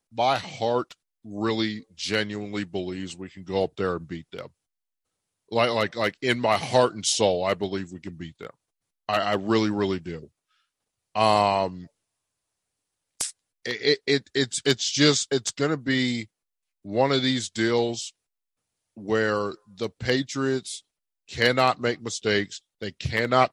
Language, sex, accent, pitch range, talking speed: English, male, American, 105-135 Hz, 140 wpm